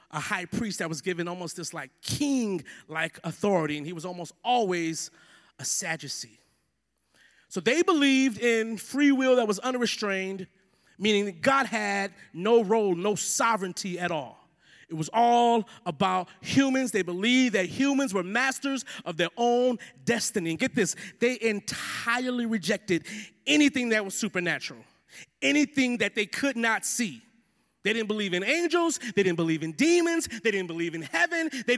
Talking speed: 160 wpm